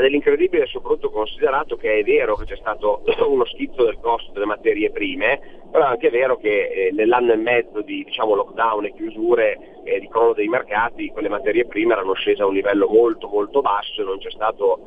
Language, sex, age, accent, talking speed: Italian, male, 30-49, native, 205 wpm